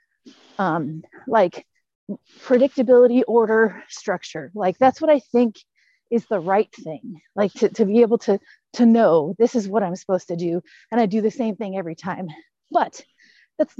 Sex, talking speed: female, 170 wpm